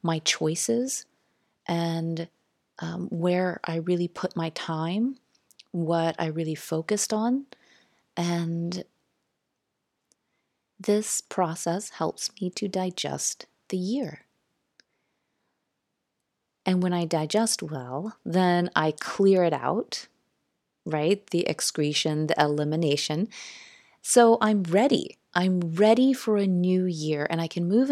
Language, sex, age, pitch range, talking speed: English, female, 30-49, 165-210 Hz, 110 wpm